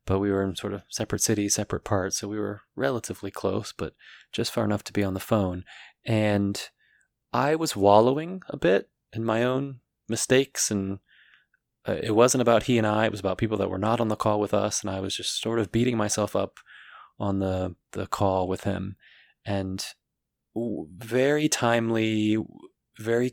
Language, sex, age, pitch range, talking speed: English, male, 30-49, 95-115 Hz, 185 wpm